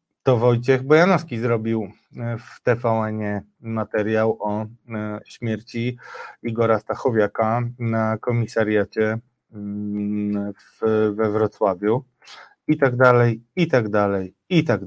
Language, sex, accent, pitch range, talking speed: Polish, male, native, 110-140 Hz, 95 wpm